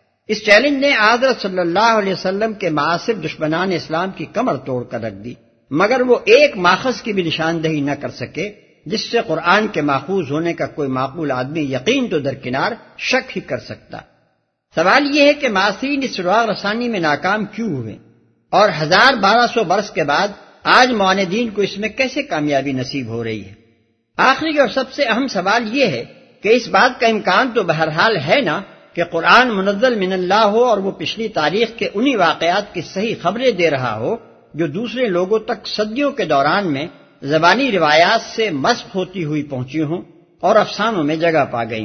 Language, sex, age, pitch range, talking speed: Urdu, male, 60-79, 155-230 Hz, 190 wpm